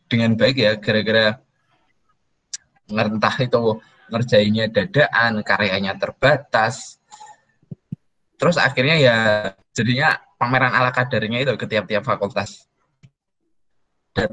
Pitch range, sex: 110-130 Hz, male